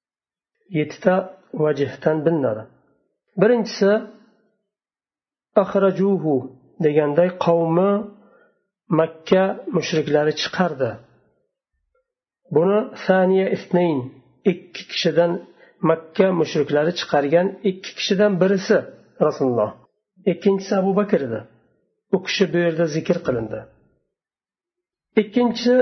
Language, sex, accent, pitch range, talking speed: Russian, male, Turkish, 165-210 Hz, 65 wpm